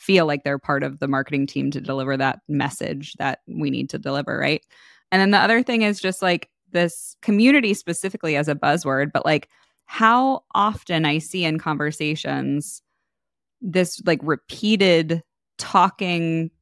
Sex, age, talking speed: female, 20-39, 160 wpm